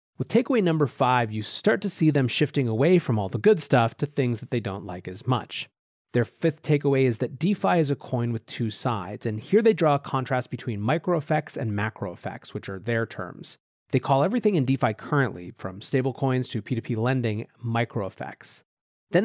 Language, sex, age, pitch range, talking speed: English, male, 30-49, 110-145 Hz, 195 wpm